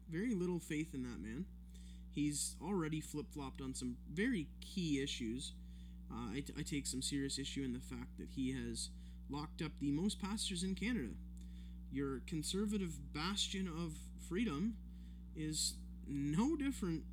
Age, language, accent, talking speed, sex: 20-39, English, American, 145 wpm, male